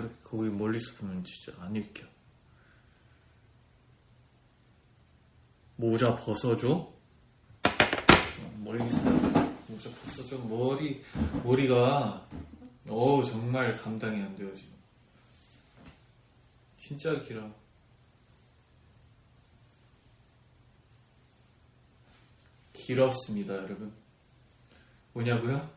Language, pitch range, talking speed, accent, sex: English, 110-135 Hz, 55 wpm, Korean, male